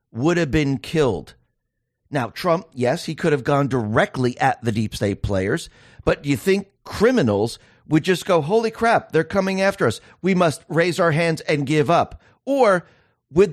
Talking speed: 180 wpm